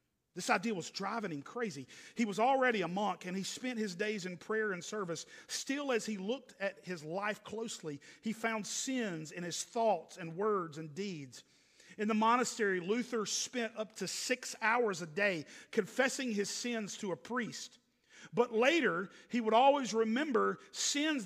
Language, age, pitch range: English, 50-69, 205-270 Hz